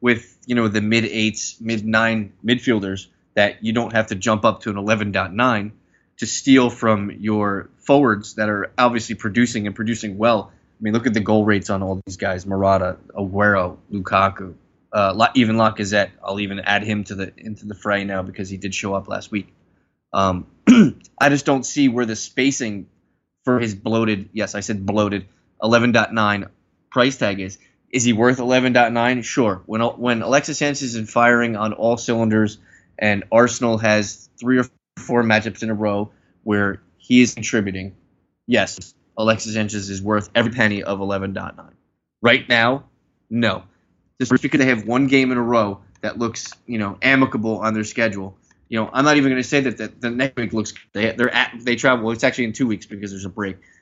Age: 20-39